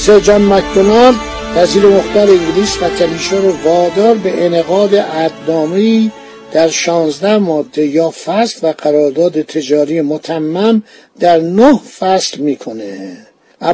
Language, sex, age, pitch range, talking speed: Persian, male, 60-79, 160-210 Hz, 100 wpm